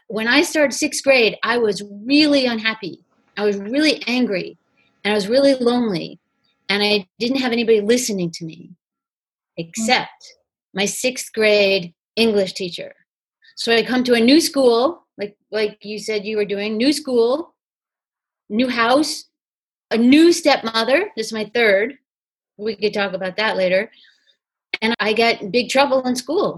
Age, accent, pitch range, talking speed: 30-49, American, 205-245 Hz, 160 wpm